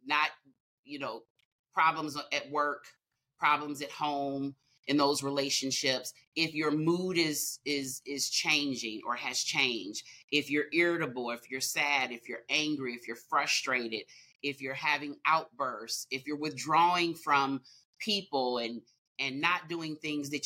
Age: 30-49